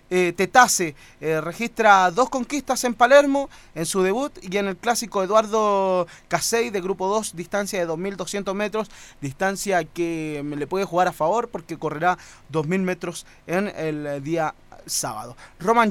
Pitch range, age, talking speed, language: 170-225 Hz, 20-39, 150 wpm, Spanish